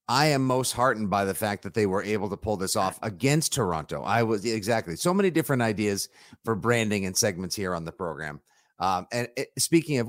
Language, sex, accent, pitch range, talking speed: English, male, American, 105-140 Hz, 215 wpm